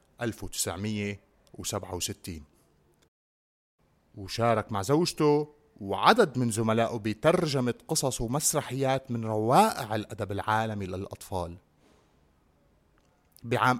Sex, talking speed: male, 70 wpm